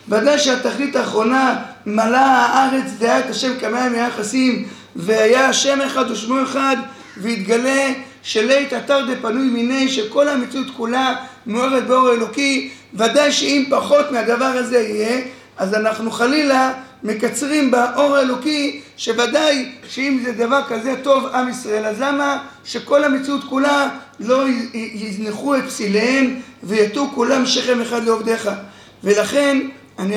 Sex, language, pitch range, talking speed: male, Hebrew, 220-265 Hz, 125 wpm